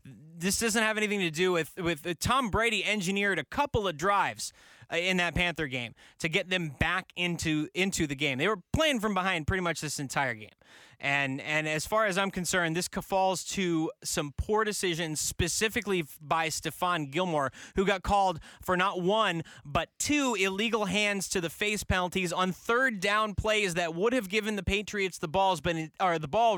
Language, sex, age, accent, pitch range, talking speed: English, male, 20-39, American, 160-205 Hz, 190 wpm